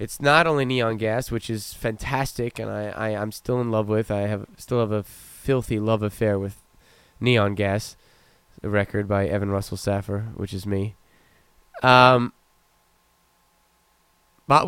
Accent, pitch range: American, 110-140 Hz